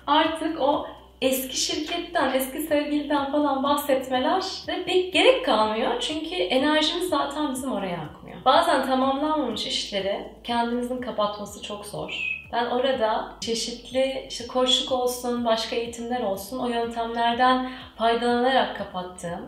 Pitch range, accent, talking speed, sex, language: 200-275 Hz, native, 115 wpm, female, Turkish